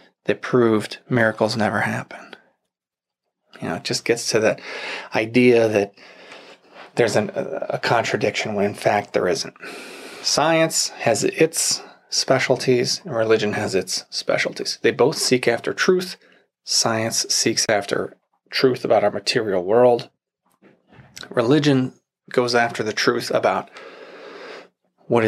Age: 30-49